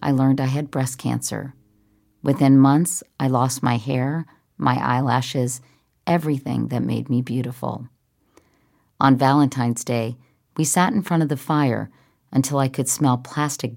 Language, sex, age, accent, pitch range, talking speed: English, female, 50-69, American, 125-150 Hz, 150 wpm